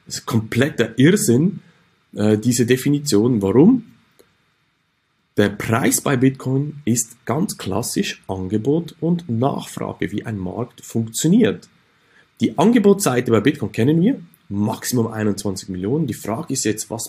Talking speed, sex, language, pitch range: 125 wpm, male, German, 100-135 Hz